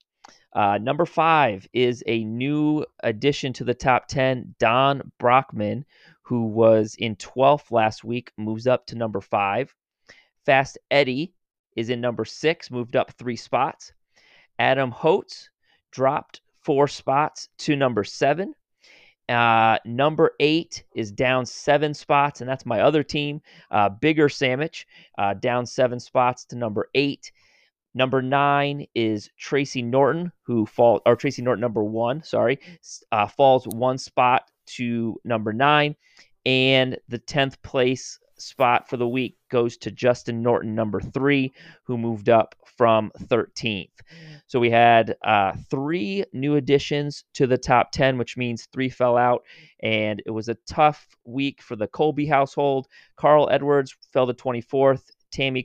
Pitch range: 115-140 Hz